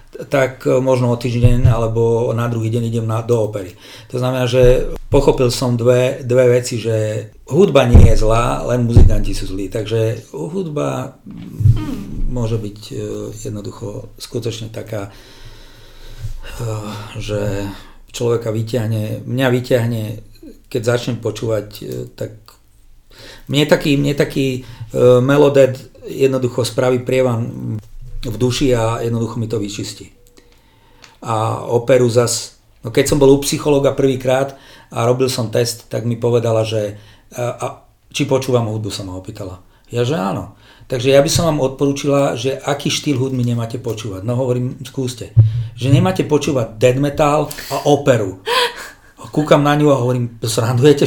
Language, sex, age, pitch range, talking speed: Slovak, male, 50-69, 110-135 Hz, 135 wpm